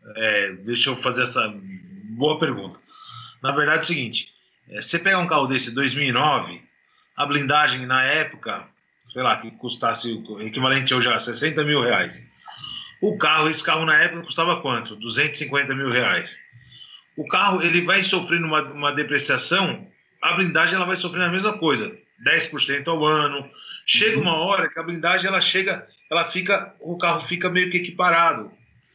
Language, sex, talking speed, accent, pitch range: Portuguese, male, 165 wpm, Brazilian, 145-185 Hz